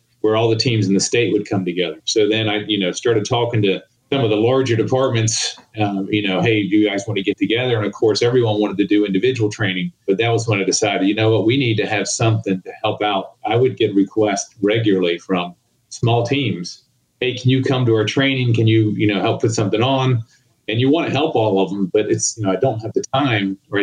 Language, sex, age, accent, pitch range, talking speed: English, male, 40-59, American, 100-120 Hz, 255 wpm